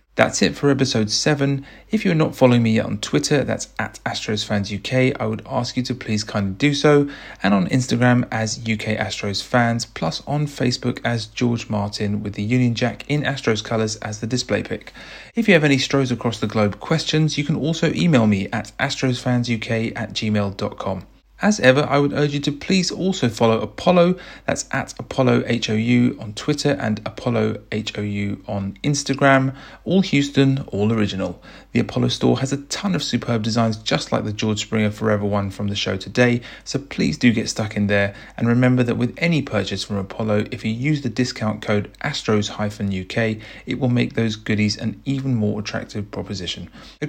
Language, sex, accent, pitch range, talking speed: English, male, British, 105-135 Hz, 185 wpm